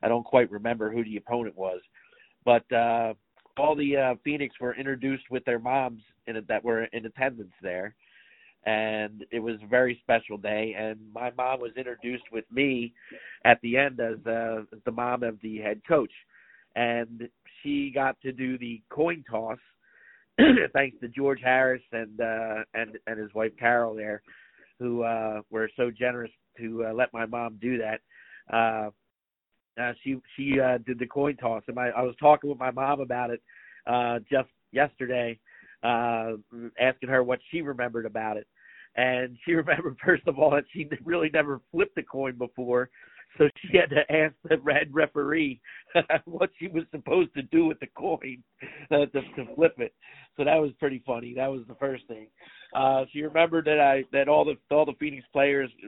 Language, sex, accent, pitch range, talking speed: English, male, American, 115-140 Hz, 185 wpm